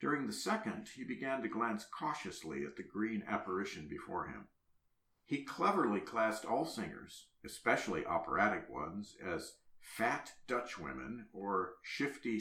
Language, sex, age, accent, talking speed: English, male, 50-69, American, 135 wpm